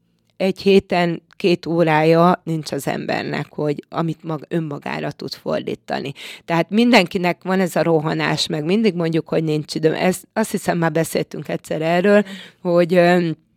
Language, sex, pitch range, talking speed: Hungarian, female, 155-180 Hz, 135 wpm